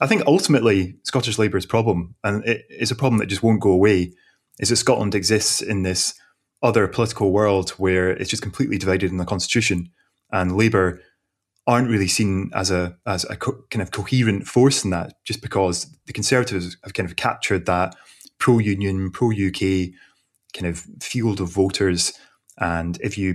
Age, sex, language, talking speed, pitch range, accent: 20-39, male, English, 170 wpm, 95-120 Hz, British